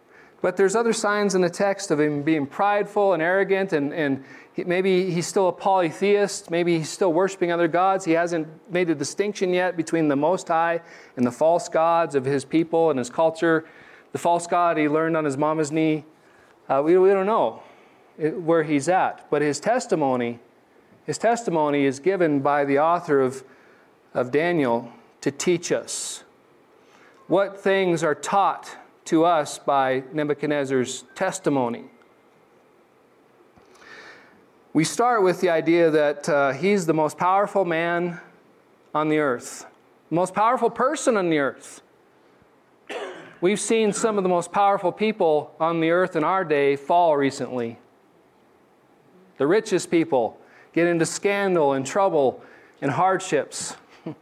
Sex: male